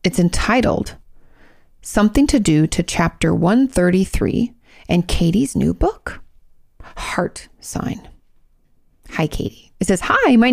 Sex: female